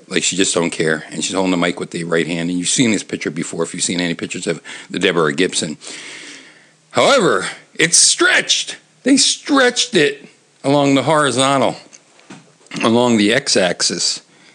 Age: 60-79